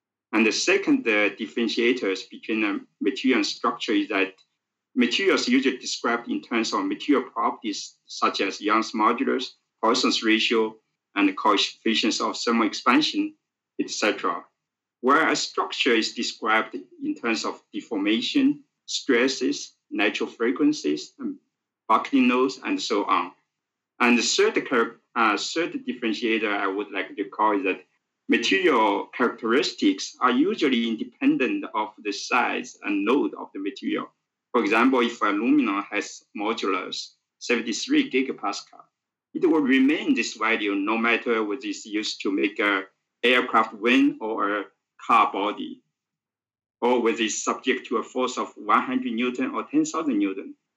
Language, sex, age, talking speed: English, male, 50-69, 140 wpm